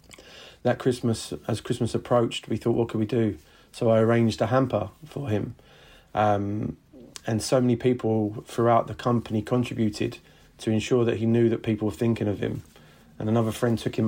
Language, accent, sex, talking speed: English, British, male, 185 wpm